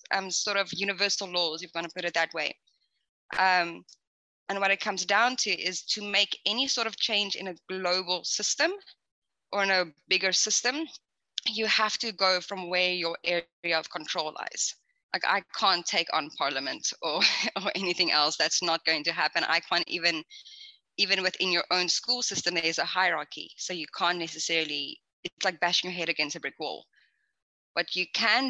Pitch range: 170-200 Hz